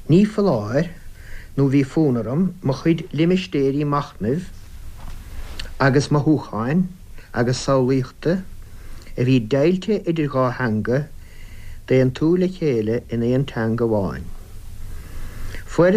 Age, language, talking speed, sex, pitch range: 60-79, English, 110 wpm, male, 95-140 Hz